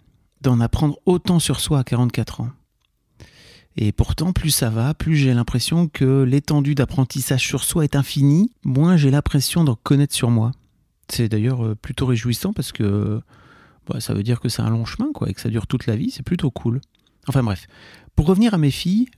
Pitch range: 115-150 Hz